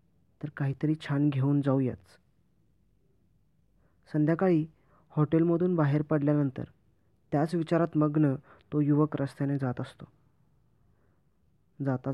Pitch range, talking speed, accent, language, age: 135-155 Hz, 90 wpm, native, Marathi, 20-39